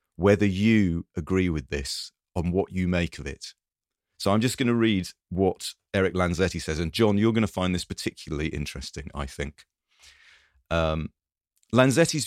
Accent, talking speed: British, 165 wpm